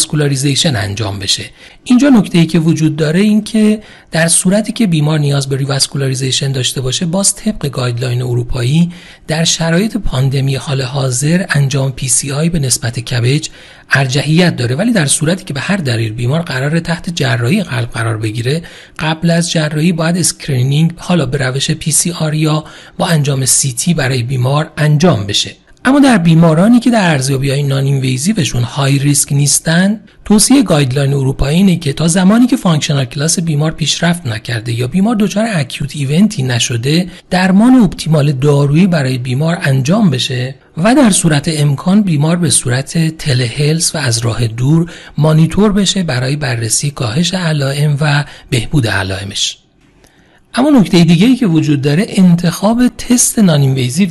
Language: Persian